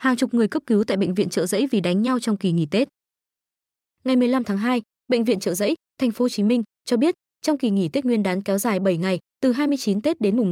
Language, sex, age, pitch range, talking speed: Vietnamese, female, 20-39, 200-255 Hz, 270 wpm